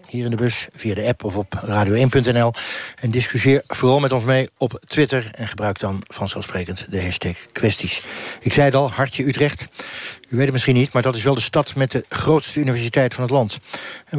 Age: 60-79